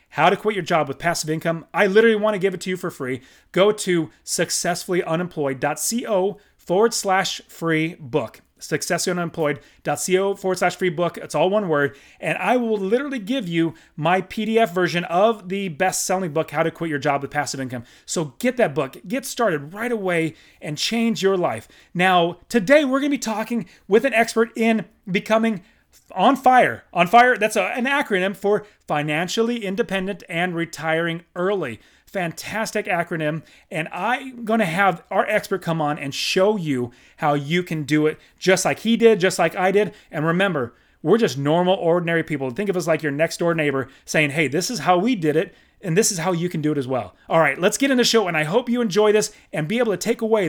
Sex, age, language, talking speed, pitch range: male, 30-49, English, 205 wpm, 155-215 Hz